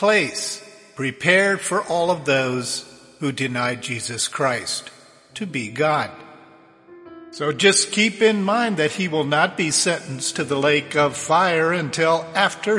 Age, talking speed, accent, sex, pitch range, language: 50-69, 145 wpm, American, male, 140-195 Hz, English